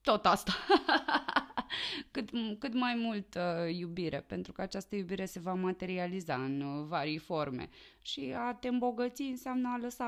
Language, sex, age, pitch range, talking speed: Romanian, female, 20-39, 165-230 Hz, 150 wpm